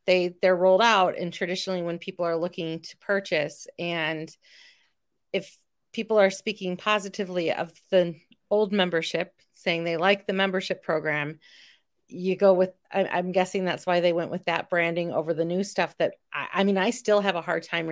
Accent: American